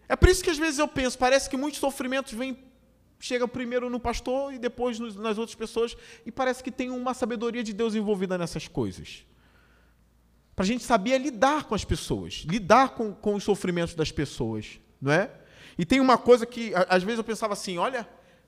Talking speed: 200 wpm